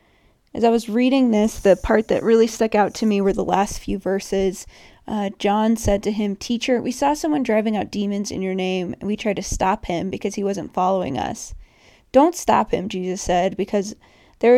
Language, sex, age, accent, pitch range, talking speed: English, female, 20-39, American, 190-225 Hz, 210 wpm